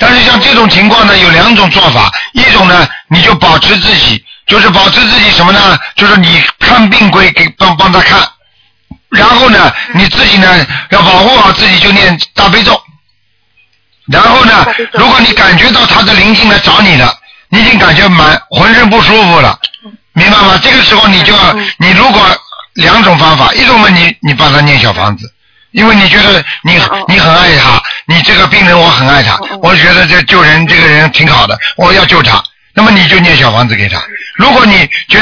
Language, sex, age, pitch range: Chinese, male, 50-69, 150-200 Hz